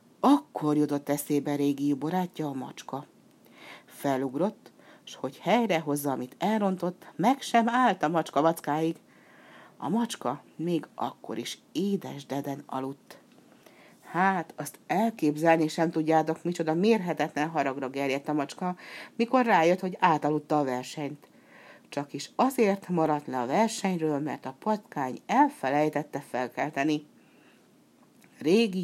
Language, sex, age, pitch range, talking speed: Hungarian, female, 60-79, 145-190 Hz, 115 wpm